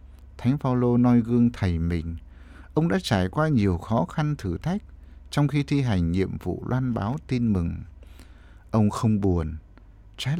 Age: 60-79